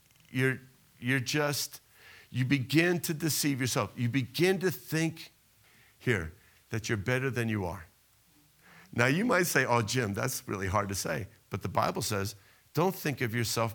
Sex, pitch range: male, 105-140 Hz